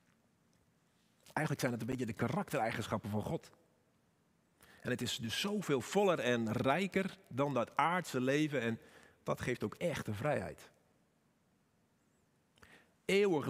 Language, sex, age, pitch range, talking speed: Dutch, male, 50-69, 115-165 Hz, 125 wpm